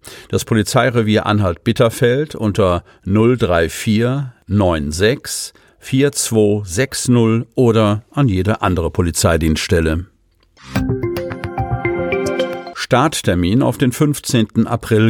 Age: 50-69